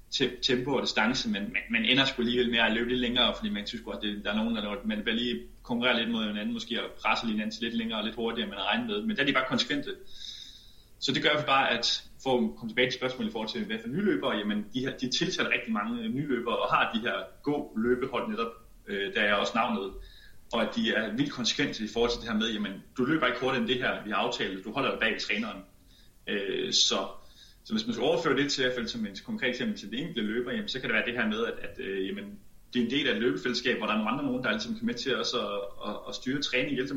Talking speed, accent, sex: 280 wpm, native, male